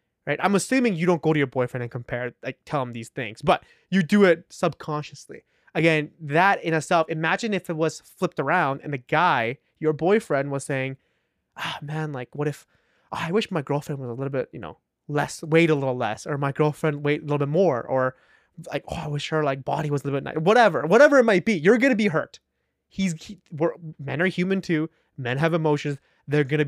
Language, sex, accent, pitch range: English, male, American, 140-175 Hz